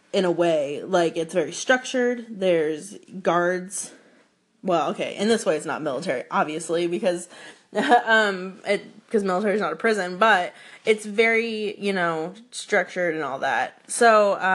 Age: 20-39